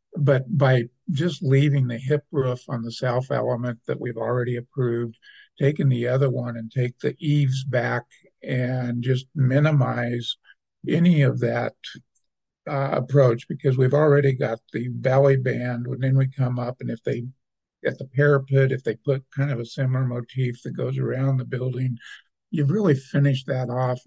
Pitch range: 120-140 Hz